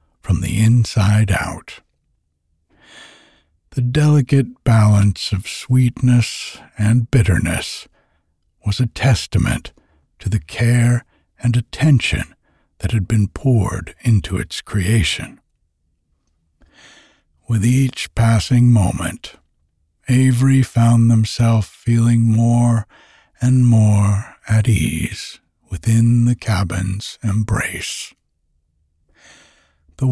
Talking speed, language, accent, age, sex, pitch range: 90 wpm, English, American, 60-79, male, 90-120 Hz